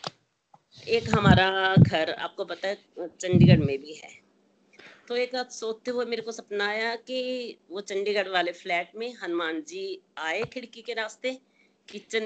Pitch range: 185-230 Hz